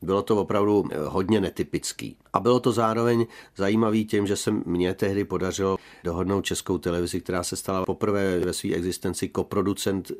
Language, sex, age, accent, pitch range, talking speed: Czech, male, 40-59, native, 90-95 Hz, 160 wpm